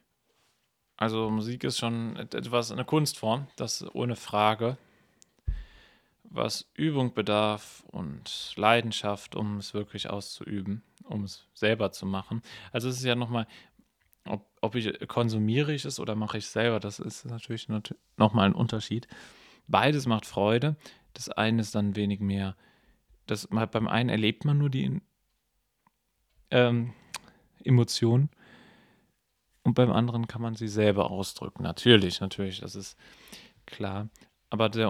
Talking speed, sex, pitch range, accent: 135 wpm, male, 100-115 Hz, German